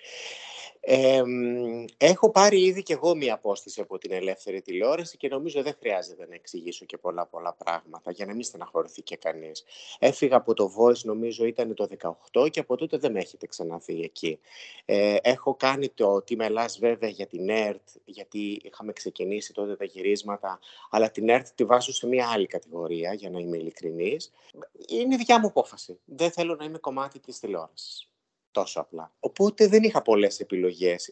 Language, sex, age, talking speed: Greek, male, 30-49, 175 wpm